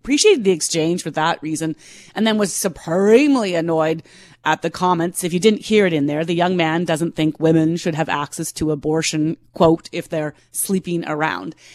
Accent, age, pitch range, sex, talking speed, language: American, 30-49, 160-200 Hz, female, 190 wpm, English